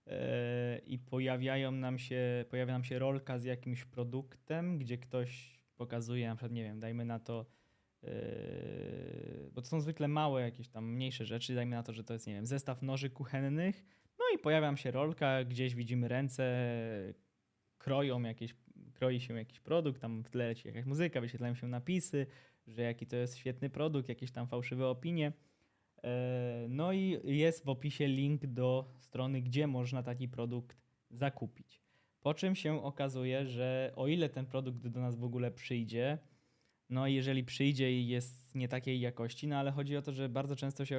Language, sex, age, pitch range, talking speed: Polish, male, 20-39, 120-140 Hz, 175 wpm